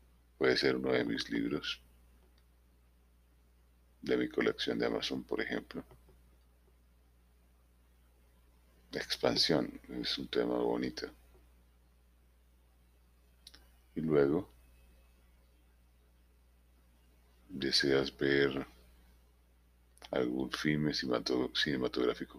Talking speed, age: 70 wpm, 50-69